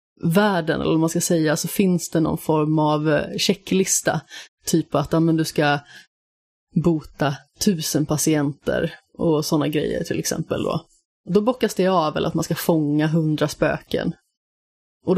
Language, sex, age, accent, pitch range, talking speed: Swedish, female, 30-49, native, 155-180 Hz, 155 wpm